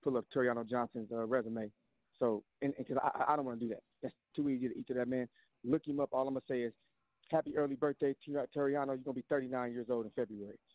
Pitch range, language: 130-170 Hz, English